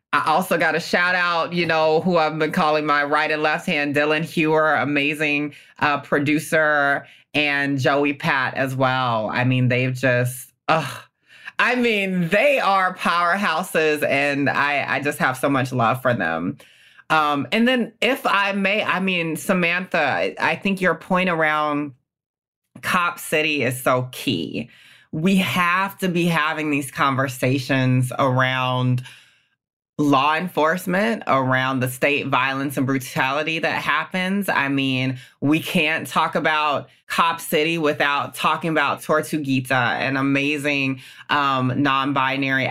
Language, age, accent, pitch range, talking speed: English, 30-49, American, 135-165 Hz, 140 wpm